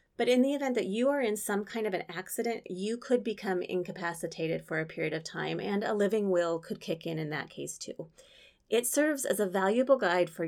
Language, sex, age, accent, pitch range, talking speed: English, female, 30-49, American, 175-220 Hz, 230 wpm